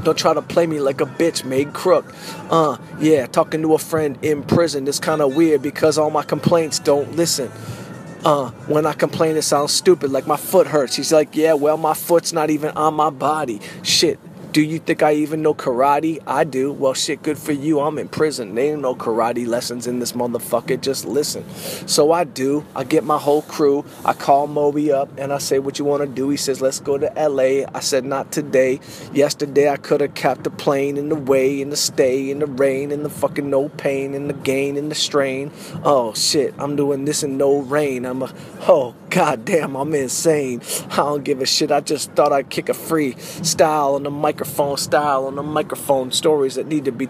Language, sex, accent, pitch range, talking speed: English, male, American, 140-160 Hz, 225 wpm